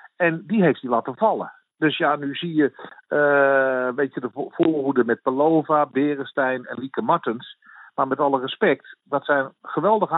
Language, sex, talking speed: Dutch, male, 170 wpm